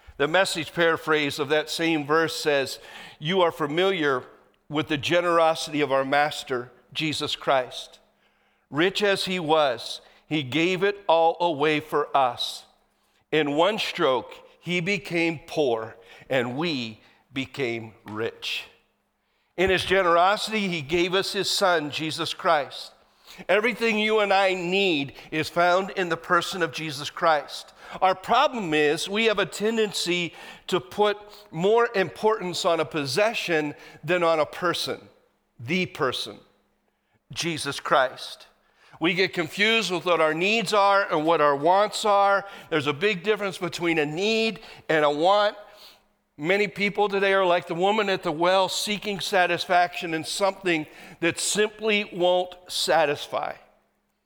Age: 50-69